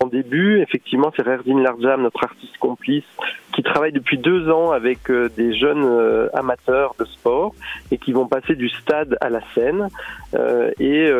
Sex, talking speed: male, 160 wpm